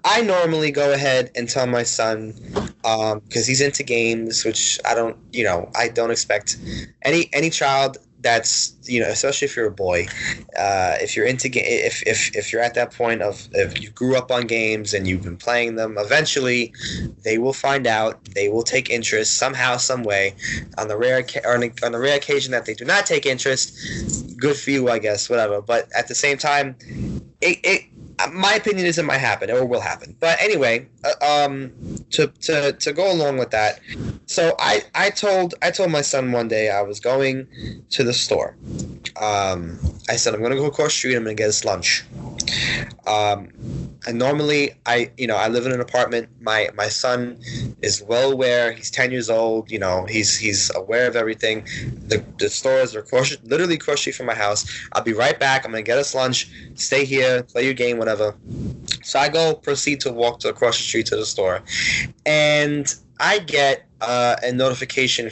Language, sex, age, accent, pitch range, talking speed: English, male, 20-39, American, 115-145 Hz, 200 wpm